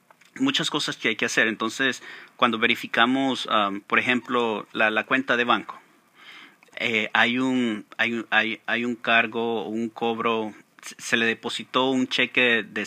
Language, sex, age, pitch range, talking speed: Spanish, male, 40-59, 110-125 Hz, 155 wpm